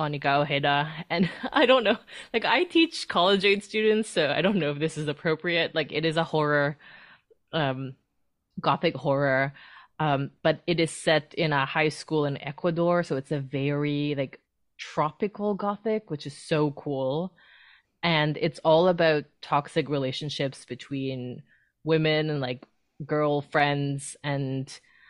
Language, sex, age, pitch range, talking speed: English, female, 20-39, 140-175 Hz, 150 wpm